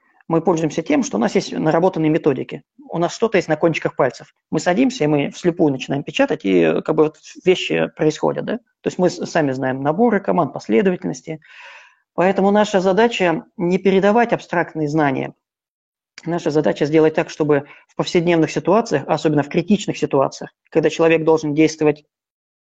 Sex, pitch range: male, 150-185 Hz